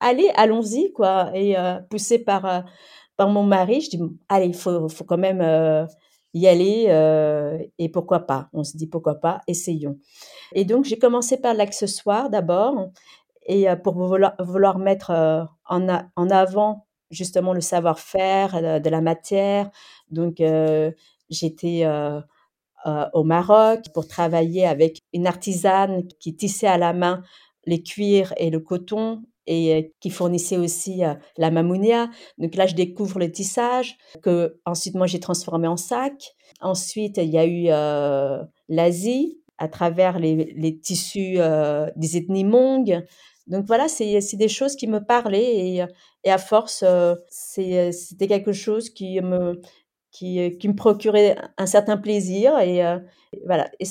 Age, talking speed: 40-59, 170 wpm